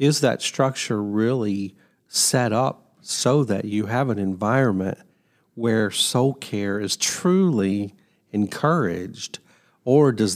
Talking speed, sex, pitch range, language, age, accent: 115 wpm, male, 100-130 Hz, English, 50-69, American